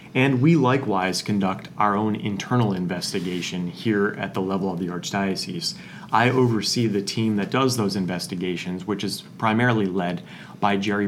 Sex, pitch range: male, 95-125 Hz